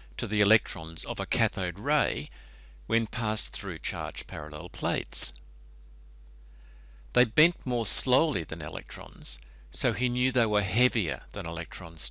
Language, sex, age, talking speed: English, male, 60-79, 130 wpm